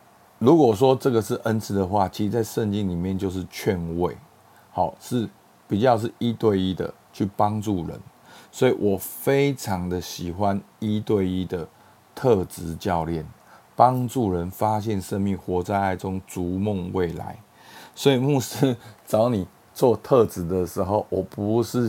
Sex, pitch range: male, 95-110 Hz